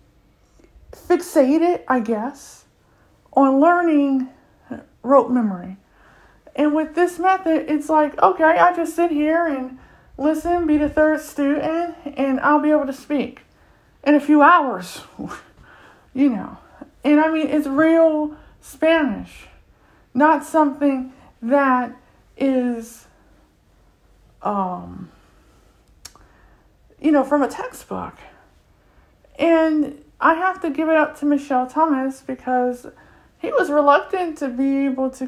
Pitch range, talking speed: 235-300 Hz, 120 wpm